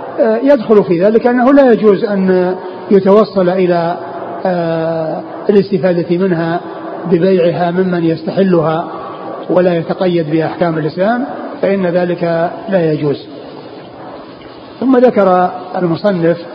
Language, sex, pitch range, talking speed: Arabic, male, 170-200 Hz, 90 wpm